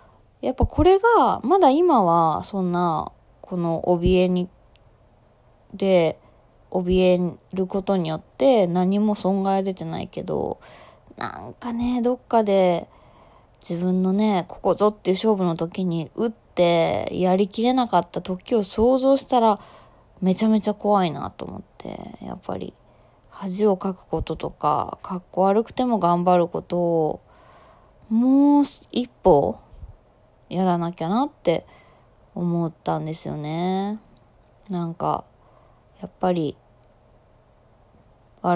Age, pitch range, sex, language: 20-39, 170-215 Hz, female, Japanese